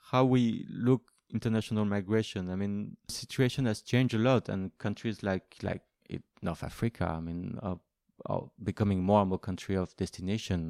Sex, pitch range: male, 95-115 Hz